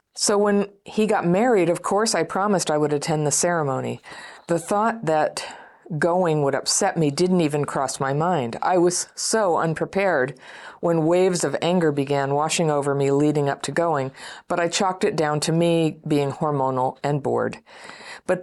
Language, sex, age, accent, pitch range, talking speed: English, female, 50-69, American, 150-180 Hz, 175 wpm